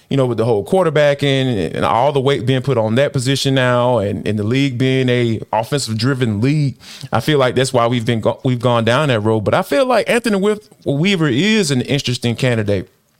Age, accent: 20-39, American